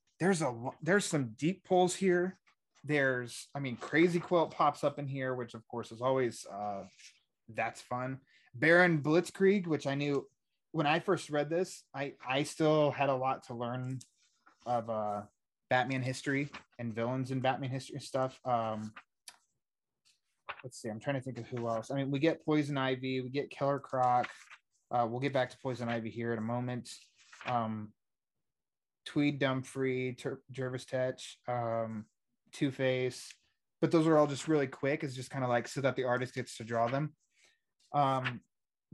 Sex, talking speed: male, 175 wpm